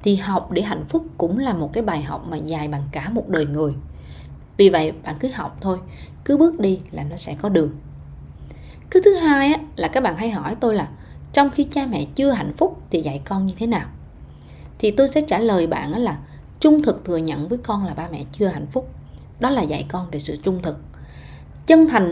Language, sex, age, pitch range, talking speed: Vietnamese, female, 20-39, 155-245 Hz, 230 wpm